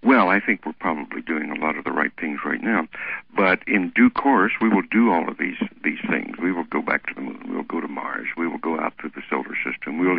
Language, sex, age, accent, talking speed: English, male, 60-79, American, 285 wpm